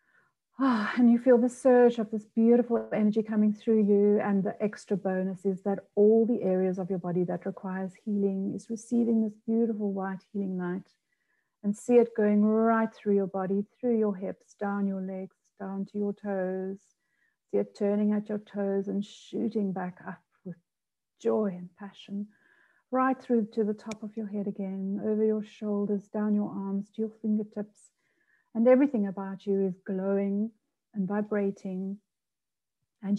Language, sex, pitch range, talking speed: English, female, 195-220 Hz, 170 wpm